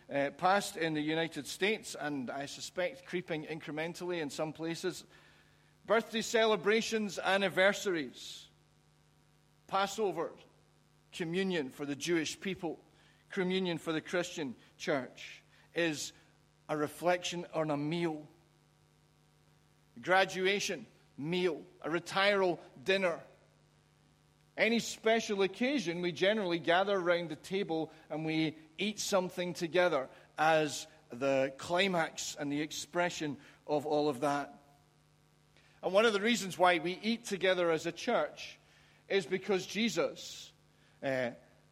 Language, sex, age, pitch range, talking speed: English, male, 40-59, 155-195 Hz, 115 wpm